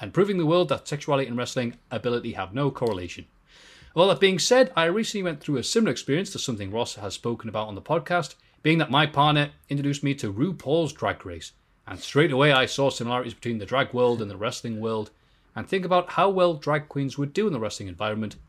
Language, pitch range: English, 115-160 Hz